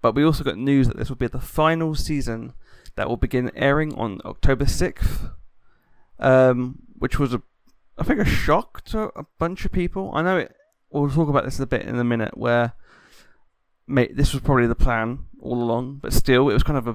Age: 20-39